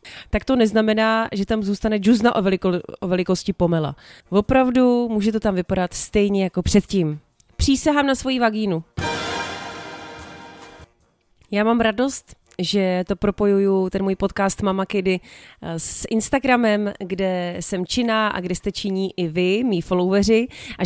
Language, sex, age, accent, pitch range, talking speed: Czech, female, 30-49, native, 180-225 Hz, 140 wpm